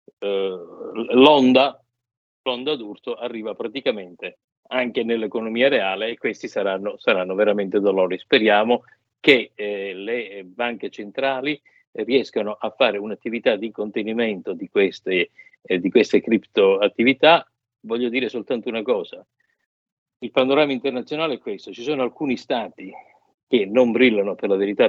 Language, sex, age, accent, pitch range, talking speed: Italian, male, 50-69, native, 105-150 Hz, 130 wpm